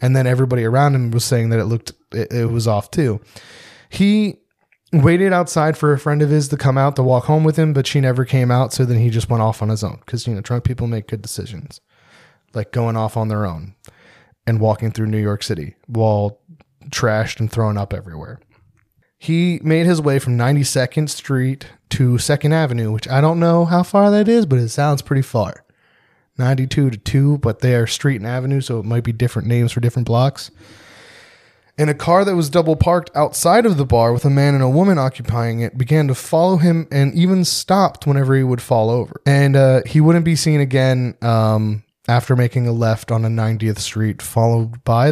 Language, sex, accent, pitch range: English, male, American, 115-145 Hz